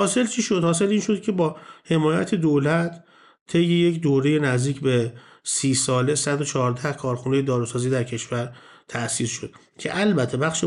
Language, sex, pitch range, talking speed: Persian, male, 125-160 Hz, 165 wpm